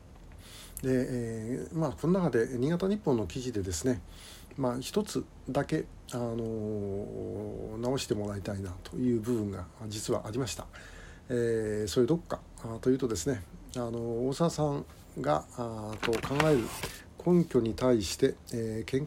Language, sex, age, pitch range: Japanese, male, 60-79, 100-130 Hz